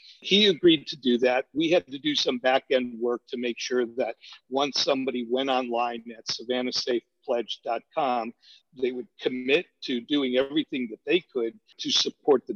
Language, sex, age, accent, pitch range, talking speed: English, male, 50-69, American, 125-195 Hz, 160 wpm